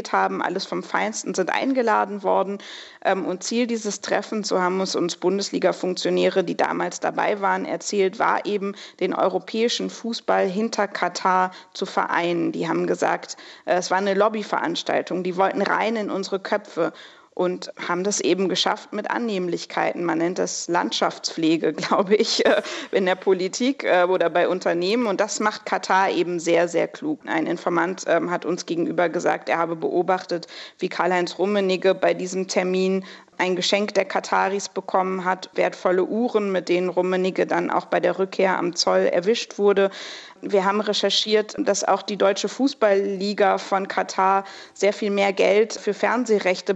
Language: German